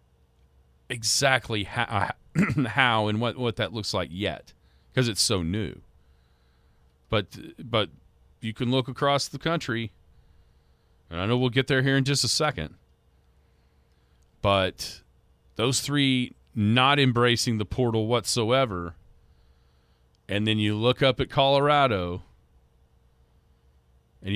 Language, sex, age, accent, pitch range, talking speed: English, male, 40-59, American, 75-120 Hz, 120 wpm